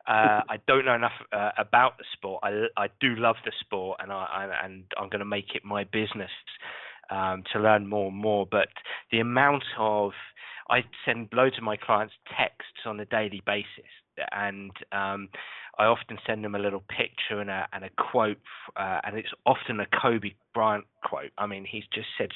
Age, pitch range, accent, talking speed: 20-39, 100-115 Hz, British, 200 wpm